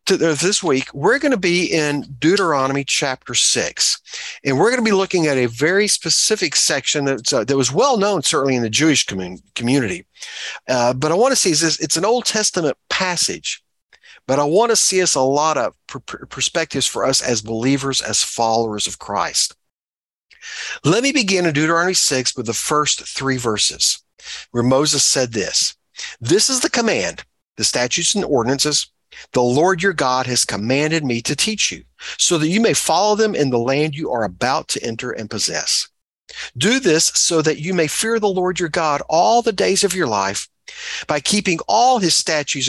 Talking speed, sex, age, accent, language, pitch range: 185 wpm, male, 50-69, American, English, 130-195 Hz